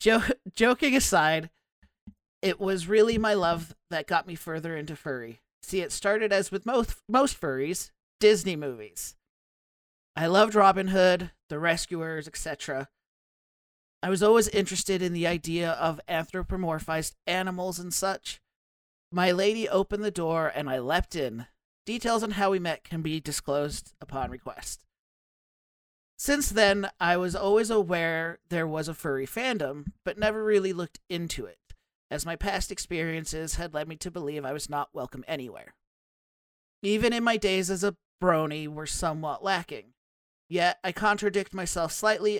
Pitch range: 160-200 Hz